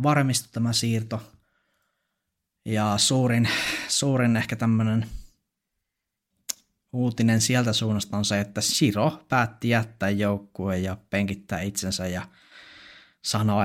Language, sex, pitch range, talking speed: Finnish, male, 100-115 Hz, 100 wpm